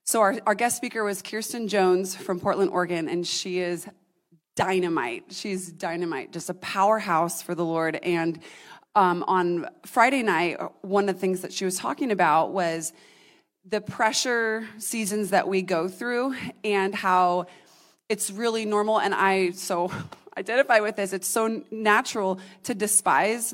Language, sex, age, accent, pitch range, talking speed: English, female, 30-49, American, 180-220 Hz, 155 wpm